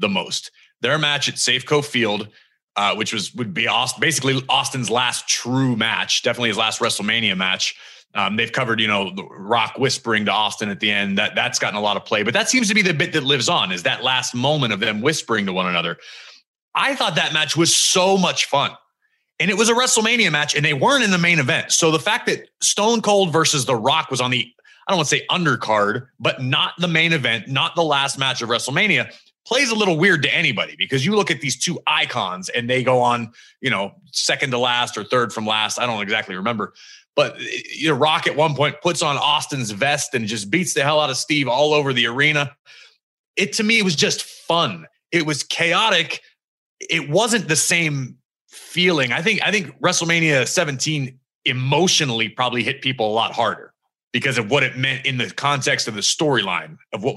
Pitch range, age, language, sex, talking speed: 120-170 Hz, 30-49, English, male, 215 wpm